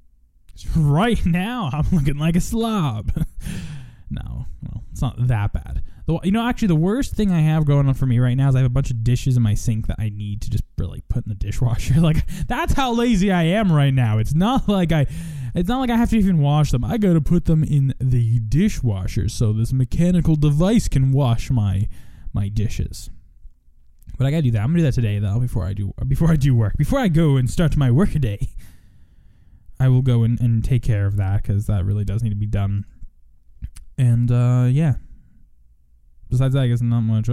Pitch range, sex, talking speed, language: 105-155 Hz, male, 220 wpm, English